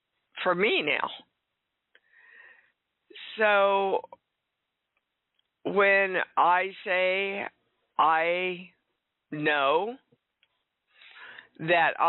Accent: American